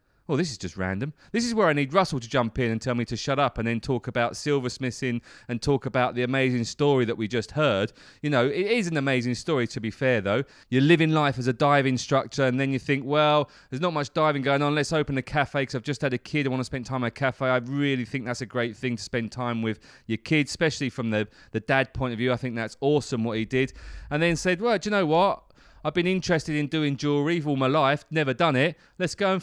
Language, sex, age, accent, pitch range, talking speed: English, male, 30-49, British, 125-160 Hz, 270 wpm